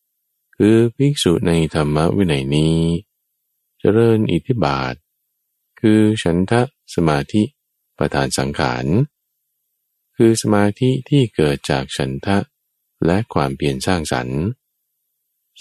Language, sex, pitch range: Thai, male, 70-120 Hz